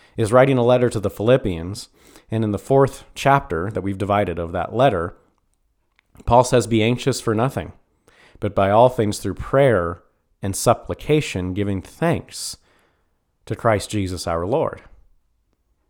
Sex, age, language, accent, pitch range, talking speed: male, 30-49, English, American, 95-130 Hz, 145 wpm